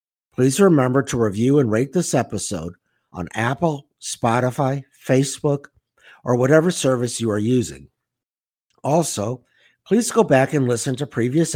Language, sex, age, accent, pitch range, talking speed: English, male, 60-79, American, 105-145 Hz, 135 wpm